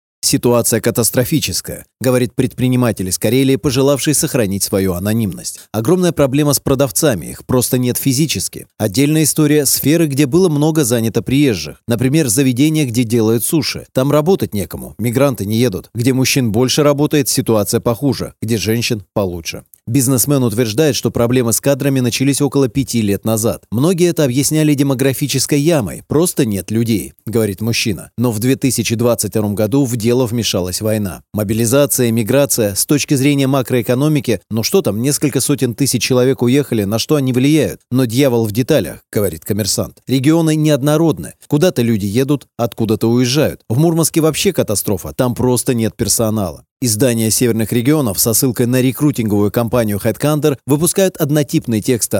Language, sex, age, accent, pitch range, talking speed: Russian, male, 30-49, native, 110-145 Hz, 145 wpm